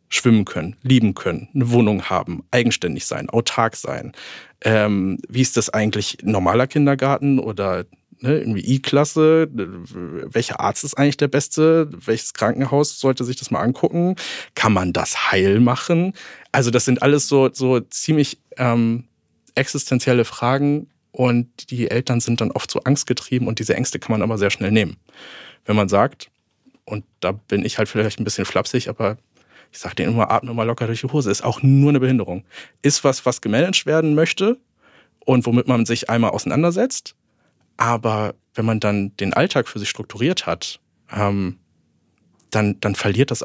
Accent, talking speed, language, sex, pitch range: German, 165 wpm, German, male, 105-135 Hz